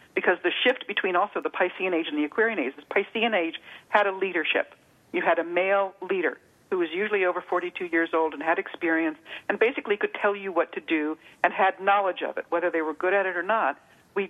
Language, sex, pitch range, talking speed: English, female, 165-210 Hz, 230 wpm